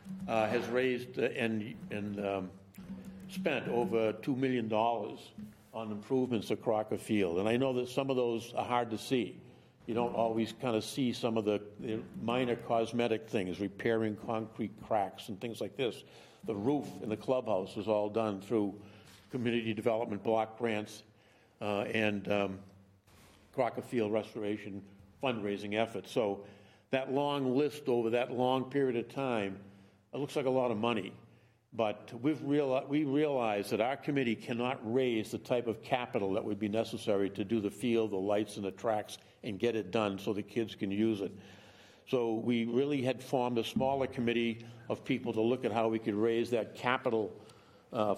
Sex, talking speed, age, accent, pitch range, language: male, 180 wpm, 60-79, American, 105-125 Hz, English